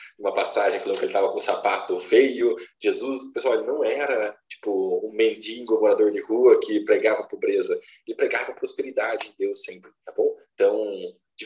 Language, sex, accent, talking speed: Portuguese, male, Brazilian, 185 wpm